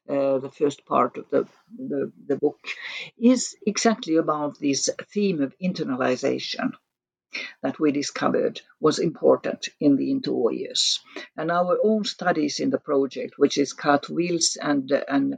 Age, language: 60-79, English